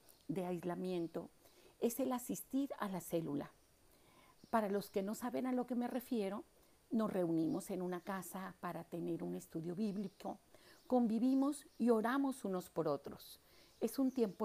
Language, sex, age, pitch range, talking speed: Spanish, female, 50-69, 180-230 Hz, 155 wpm